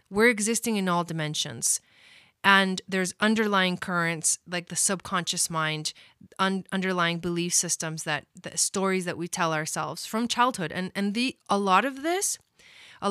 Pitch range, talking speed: 170-210 Hz, 155 wpm